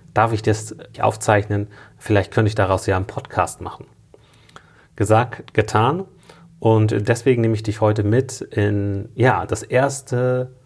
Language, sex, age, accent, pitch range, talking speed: German, male, 30-49, German, 100-110 Hz, 140 wpm